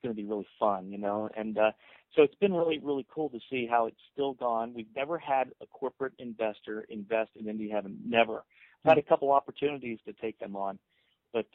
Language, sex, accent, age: English, male, American, 40-59